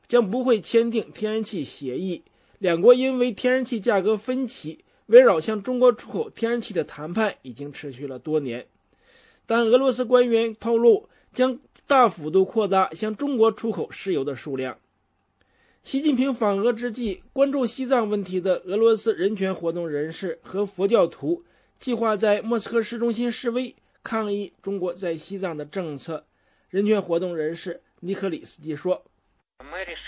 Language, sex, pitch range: English, male, 175-240 Hz